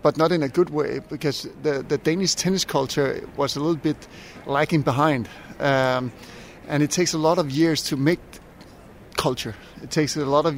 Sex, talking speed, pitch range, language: male, 195 wpm, 135-155 Hz, English